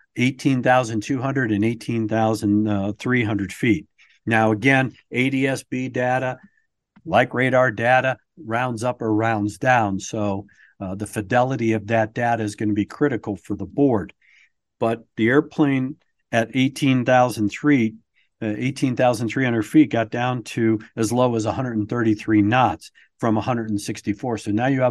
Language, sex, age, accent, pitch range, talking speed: English, male, 50-69, American, 110-140 Hz, 120 wpm